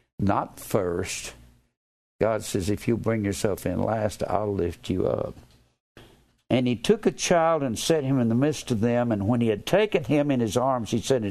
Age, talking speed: 60-79, 200 wpm